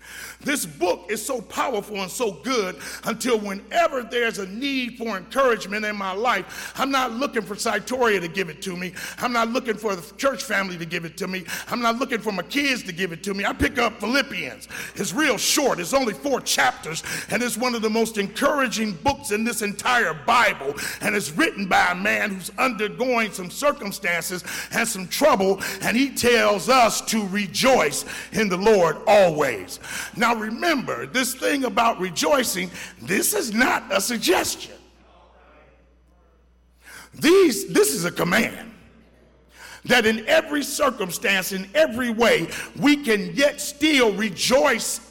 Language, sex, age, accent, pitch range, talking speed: English, male, 50-69, American, 175-250 Hz, 165 wpm